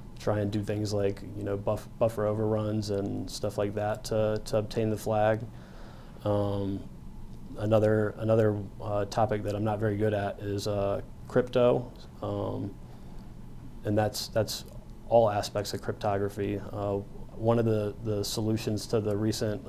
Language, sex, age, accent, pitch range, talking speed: English, male, 30-49, American, 100-110 Hz, 150 wpm